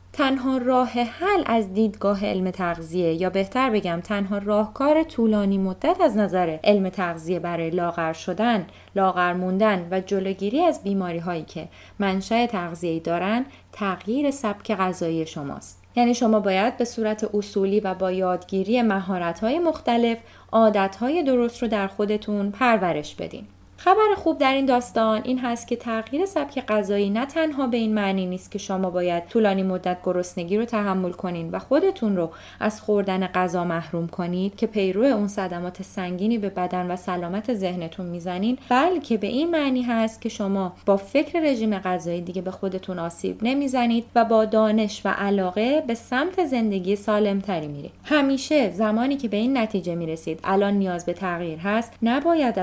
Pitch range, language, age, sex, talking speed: 185-235 Hz, Persian, 30-49, female, 155 wpm